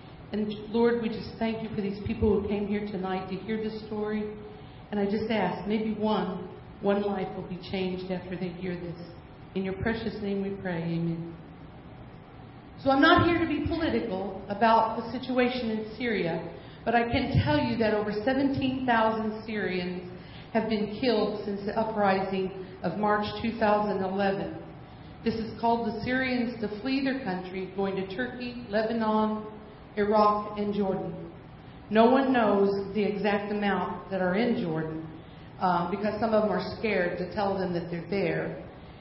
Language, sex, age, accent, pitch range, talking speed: English, female, 50-69, American, 185-220 Hz, 165 wpm